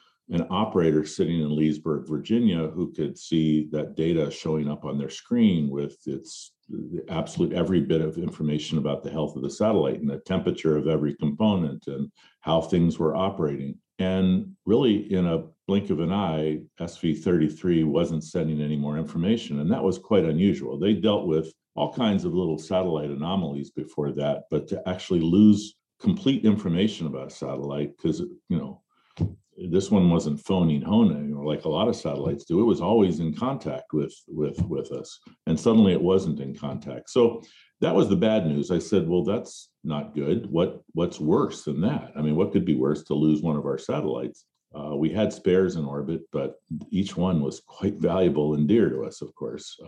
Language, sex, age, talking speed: English, male, 50-69, 190 wpm